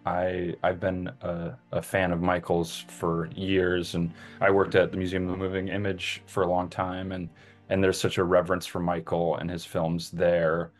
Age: 20-39